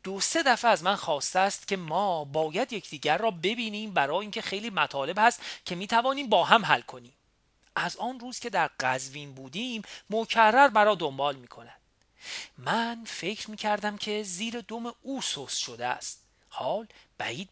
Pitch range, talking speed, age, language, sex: 150-225 Hz, 170 wpm, 40-59, Persian, male